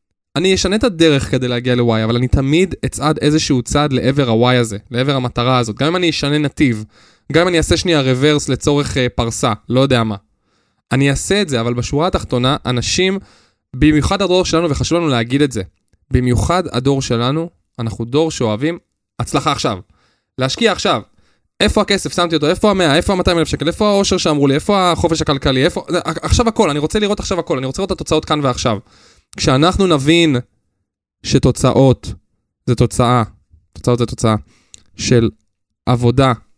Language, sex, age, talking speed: Hebrew, male, 20-39, 150 wpm